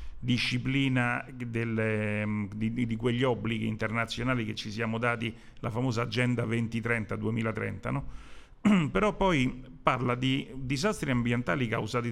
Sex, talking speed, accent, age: male, 120 wpm, native, 50-69